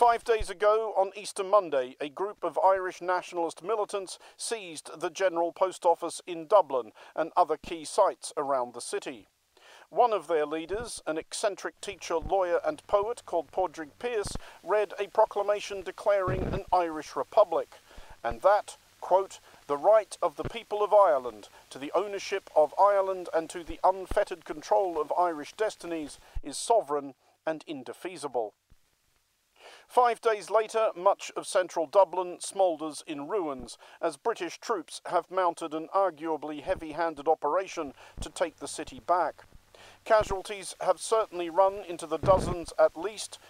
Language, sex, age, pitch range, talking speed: English, male, 50-69, 160-200 Hz, 145 wpm